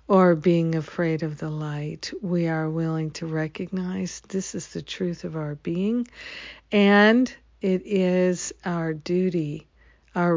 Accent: American